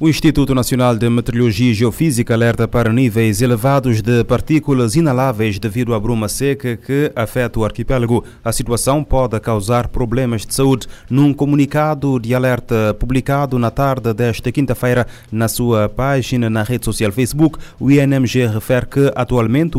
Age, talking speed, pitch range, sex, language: 30-49, 150 wpm, 115-130 Hz, male, Portuguese